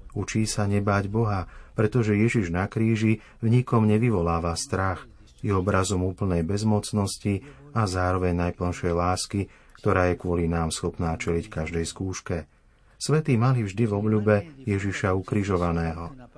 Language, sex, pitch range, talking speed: Slovak, male, 90-115 Hz, 130 wpm